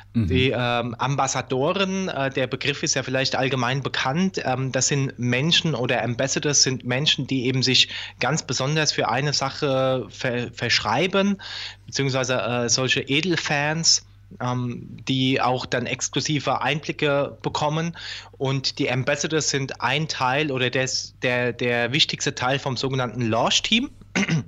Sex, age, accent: male, 20-39, German